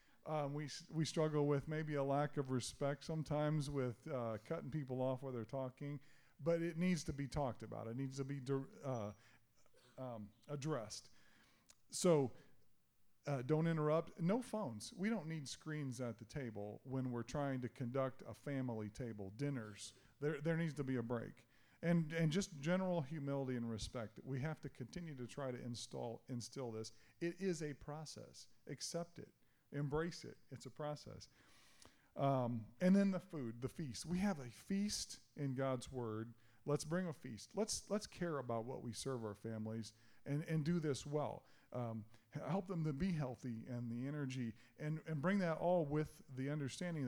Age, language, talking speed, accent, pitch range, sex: 40-59, English, 180 wpm, American, 120-160 Hz, male